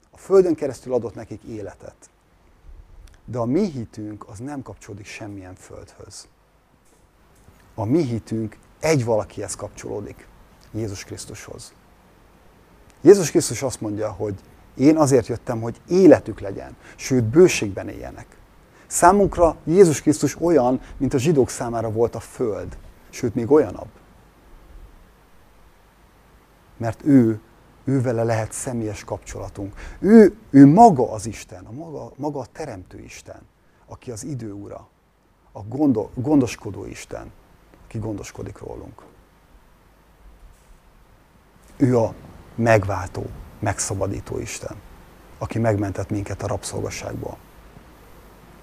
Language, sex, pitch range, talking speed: Hungarian, male, 100-130 Hz, 110 wpm